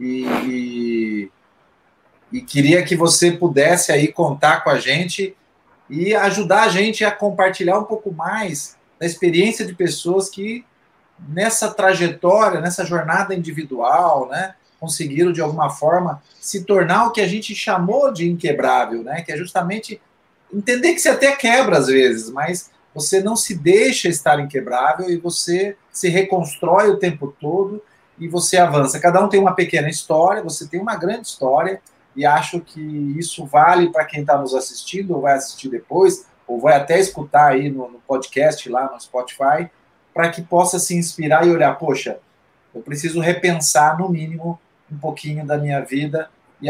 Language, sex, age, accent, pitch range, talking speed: Portuguese, male, 30-49, Brazilian, 145-190 Hz, 160 wpm